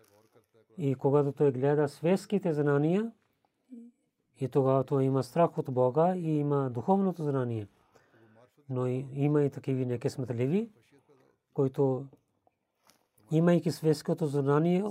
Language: Bulgarian